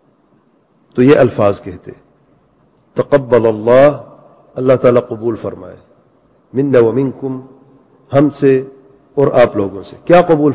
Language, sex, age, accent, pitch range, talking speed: English, male, 50-69, Indian, 125-155 Hz, 115 wpm